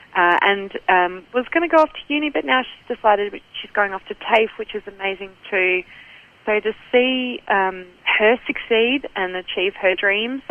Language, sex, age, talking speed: English, female, 30-49, 190 wpm